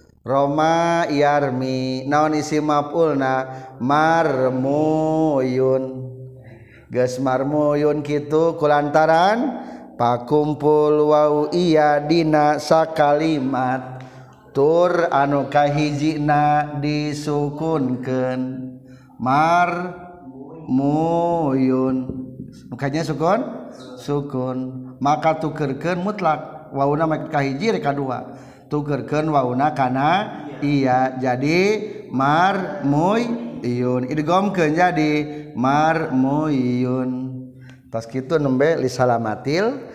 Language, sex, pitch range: Indonesian, male, 130-160 Hz